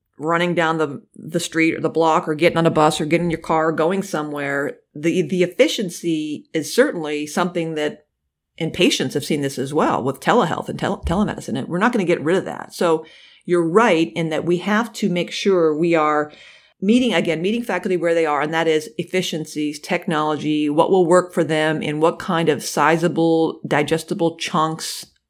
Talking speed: 200 wpm